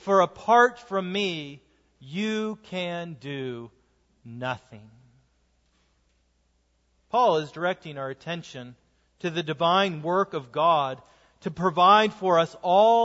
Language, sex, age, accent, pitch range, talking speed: English, male, 40-59, American, 150-220 Hz, 110 wpm